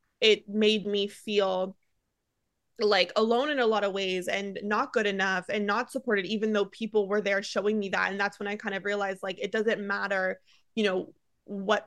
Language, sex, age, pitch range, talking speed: English, female, 20-39, 190-215 Hz, 200 wpm